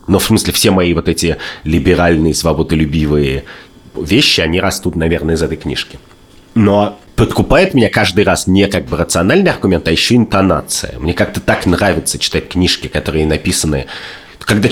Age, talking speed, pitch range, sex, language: 30-49, 155 wpm, 85-100 Hz, male, Russian